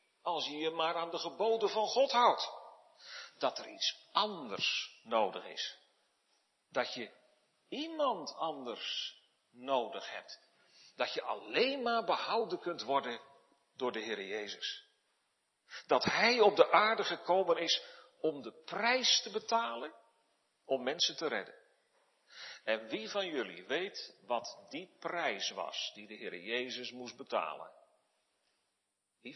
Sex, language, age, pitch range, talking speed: male, Dutch, 50-69, 165-280 Hz, 135 wpm